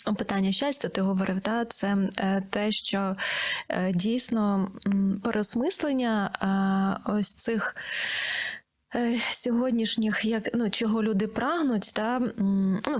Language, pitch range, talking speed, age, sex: Ukrainian, 200-235 Hz, 115 wpm, 20-39, female